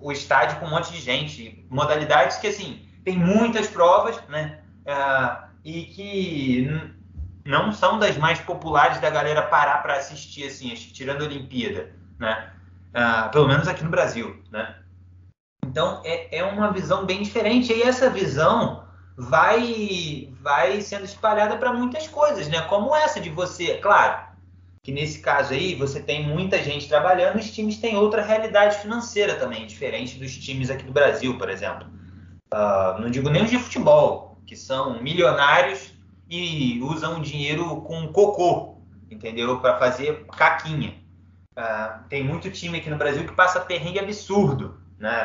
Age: 20-39